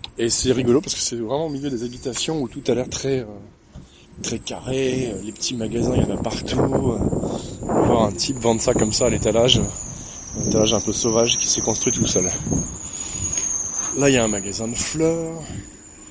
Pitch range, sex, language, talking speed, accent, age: 110-135 Hz, male, French, 210 wpm, French, 20-39